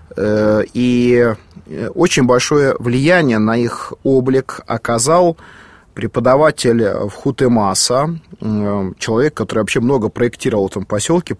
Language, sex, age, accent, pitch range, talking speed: Russian, male, 30-49, native, 110-140 Hz, 100 wpm